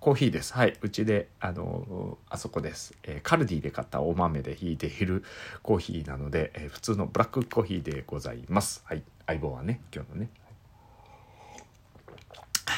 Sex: male